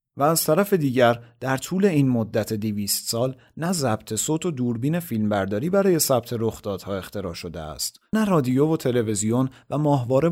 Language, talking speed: Persian, 170 wpm